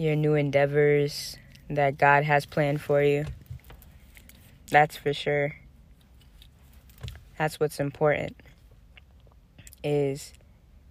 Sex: female